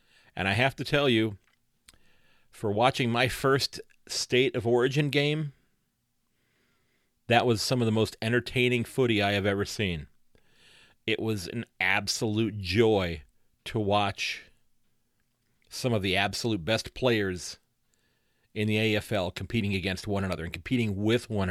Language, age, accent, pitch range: English, 40-59, American, 95-115 Hz